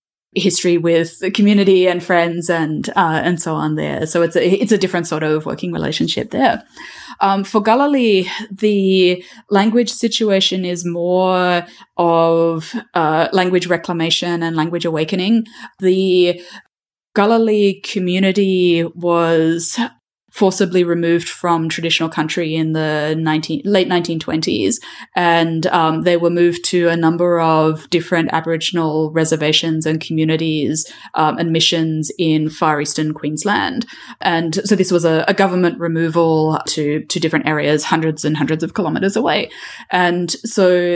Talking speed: 135 wpm